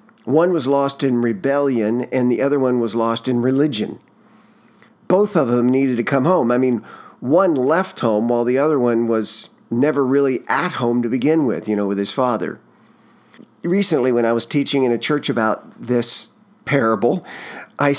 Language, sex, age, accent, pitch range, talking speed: English, male, 50-69, American, 120-160 Hz, 180 wpm